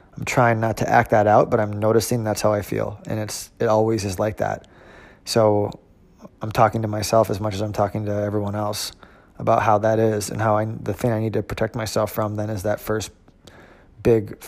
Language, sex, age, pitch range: English, male, 20-39, 105-120 Hz